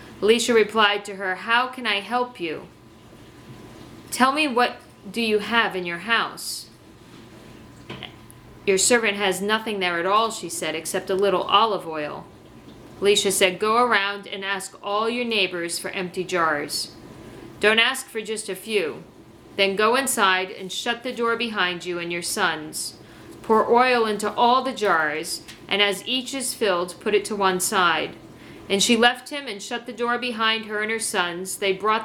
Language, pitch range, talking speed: English, 185-235 Hz, 175 wpm